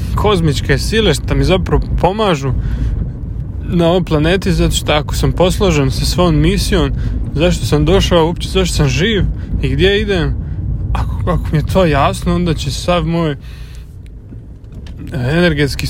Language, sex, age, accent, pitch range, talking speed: Croatian, male, 20-39, Serbian, 130-170 Hz, 145 wpm